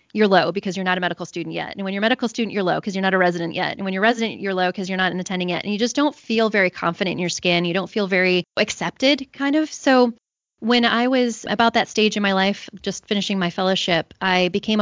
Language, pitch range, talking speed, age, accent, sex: English, 185-225 Hz, 275 wpm, 20-39, American, female